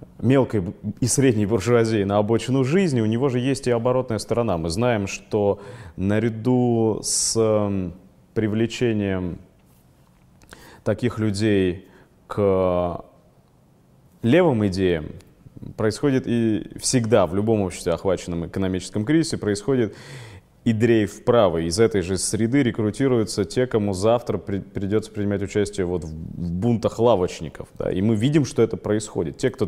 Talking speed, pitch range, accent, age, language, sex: 120 wpm, 100-120 Hz, native, 20-39, Russian, male